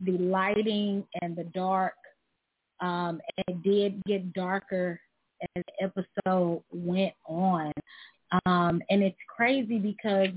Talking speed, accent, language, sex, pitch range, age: 115 wpm, American, English, female, 190-230 Hz, 30-49